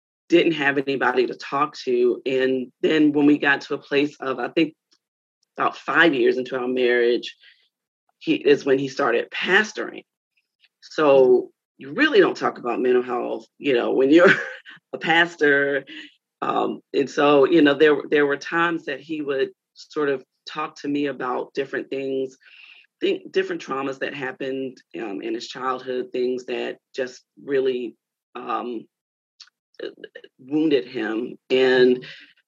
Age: 40-59